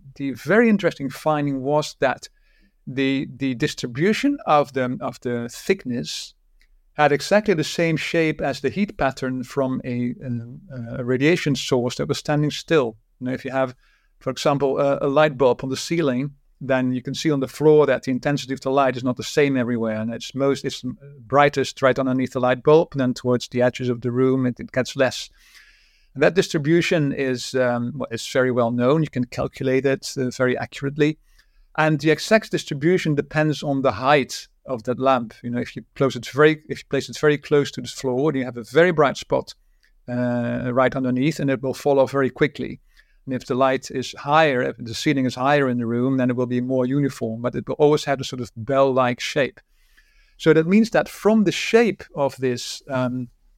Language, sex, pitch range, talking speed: English, male, 125-150 Hz, 210 wpm